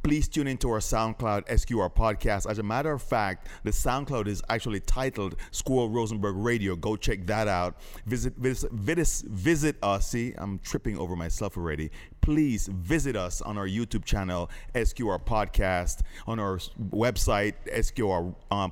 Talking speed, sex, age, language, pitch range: 160 wpm, male, 30-49, English, 90-120 Hz